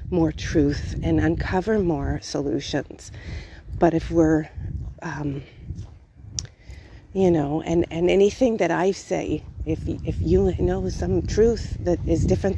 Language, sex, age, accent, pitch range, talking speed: English, female, 40-59, American, 145-190 Hz, 130 wpm